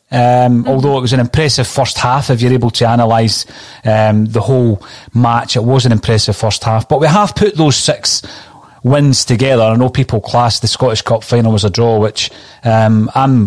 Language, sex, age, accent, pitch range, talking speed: English, male, 30-49, British, 115-135 Hz, 200 wpm